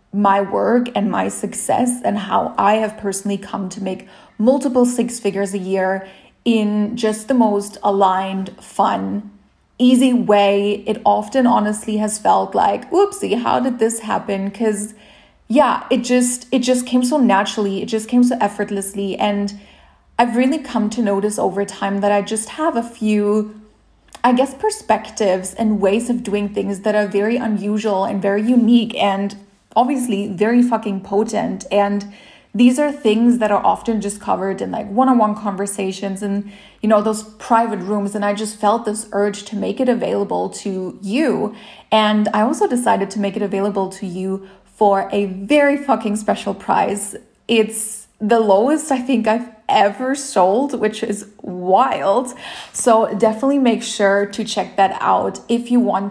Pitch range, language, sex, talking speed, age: 200-235 Hz, English, female, 165 wpm, 30-49